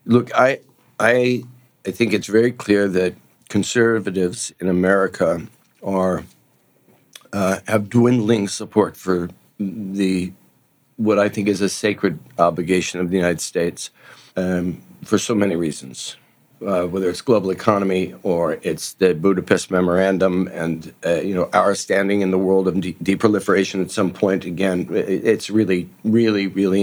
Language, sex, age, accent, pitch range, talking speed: English, male, 60-79, American, 95-110 Hz, 145 wpm